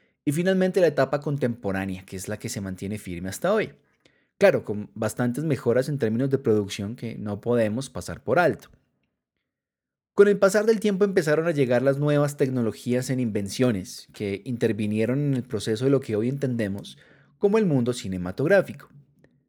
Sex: male